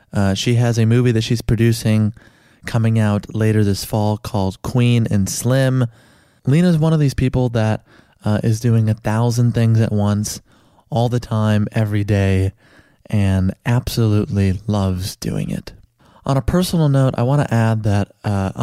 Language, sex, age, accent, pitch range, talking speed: English, male, 20-39, American, 100-120 Hz, 165 wpm